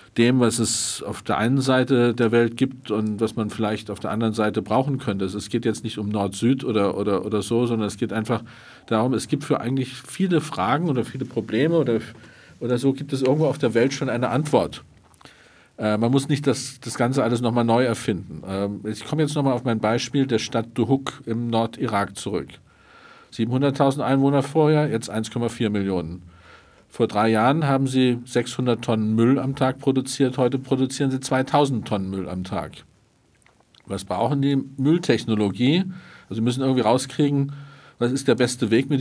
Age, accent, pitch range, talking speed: 50-69, German, 110-135 Hz, 190 wpm